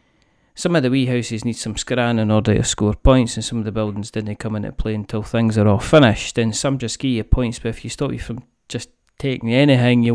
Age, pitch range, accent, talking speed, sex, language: 40-59, 110-125 Hz, British, 255 wpm, male, English